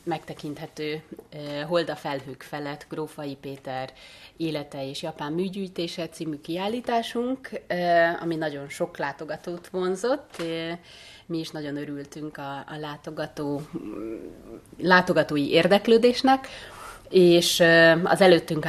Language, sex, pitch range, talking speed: Hungarian, female, 140-170 Hz, 90 wpm